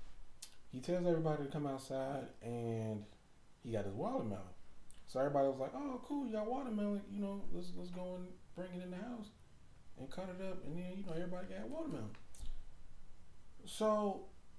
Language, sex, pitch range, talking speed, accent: English, male, 115-165 Hz, 175 wpm, American